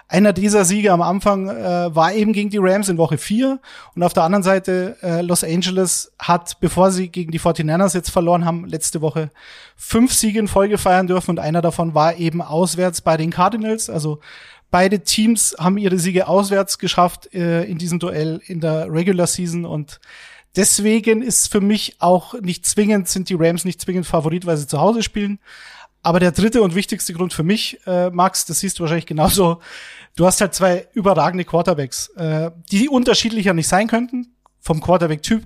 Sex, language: male, German